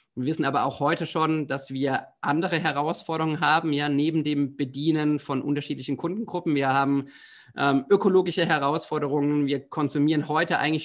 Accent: German